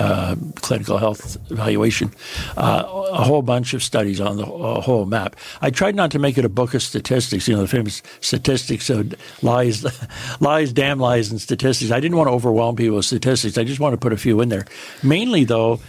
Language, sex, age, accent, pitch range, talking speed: English, male, 60-79, American, 115-140 Hz, 210 wpm